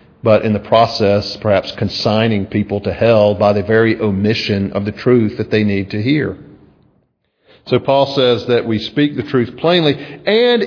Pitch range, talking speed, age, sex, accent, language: 110-145 Hz, 175 wpm, 50-69, male, American, English